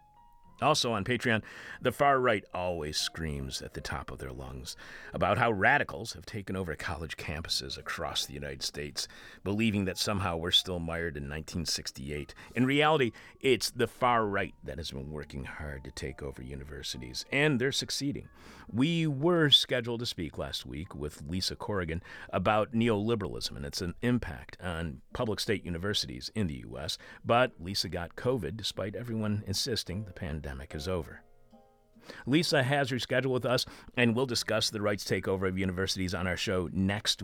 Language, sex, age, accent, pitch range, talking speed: English, male, 40-59, American, 80-125 Hz, 165 wpm